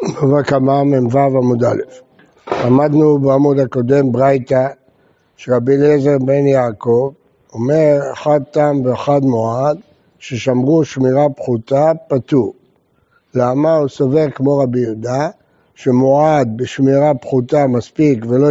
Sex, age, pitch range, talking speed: male, 60-79, 135-190 Hz, 105 wpm